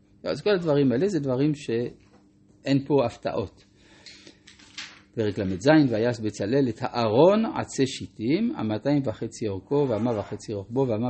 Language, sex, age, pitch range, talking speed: Hebrew, male, 50-69, 100-140 Hz, 130 wpm